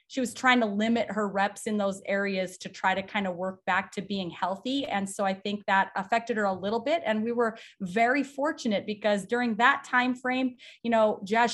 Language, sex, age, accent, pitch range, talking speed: English, female, 30-49, American, 195-235 Hz, 225 wpm